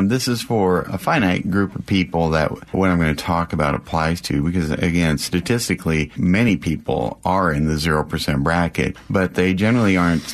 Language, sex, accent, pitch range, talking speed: English, male, American, 80-90 Hz, 180 wpm